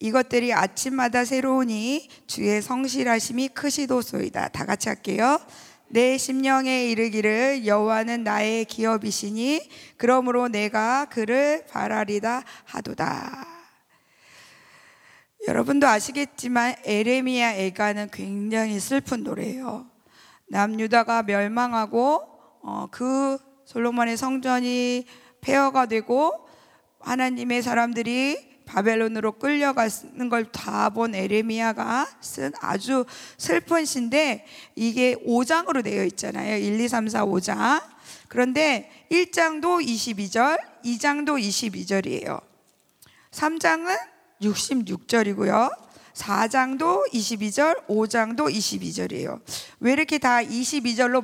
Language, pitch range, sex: Korean, 225-275 Hz, female